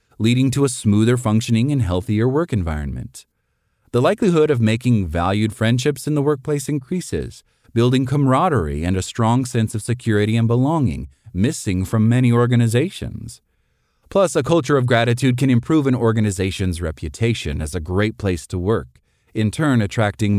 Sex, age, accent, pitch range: male, 30-49, American, 95-125 Hz